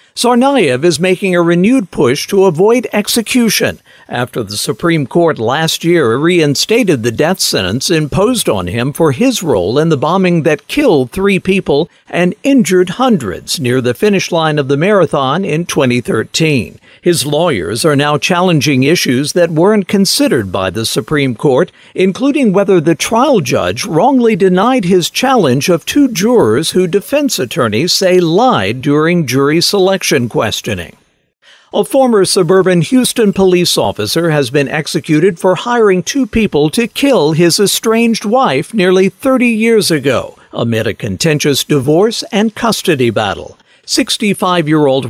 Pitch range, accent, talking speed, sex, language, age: 145-205 Hz, American, 145 wpm, male, English, 60-79